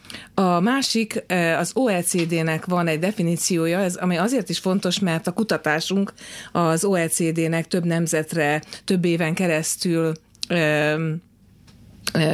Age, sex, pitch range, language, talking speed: 30-49, female, 160-200 Hz, Hungarian, 115 wpm